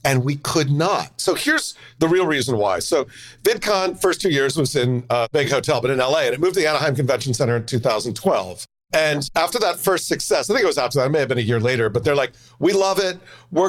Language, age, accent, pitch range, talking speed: English, 50-69, American, 135-180 Hz, 255 wpm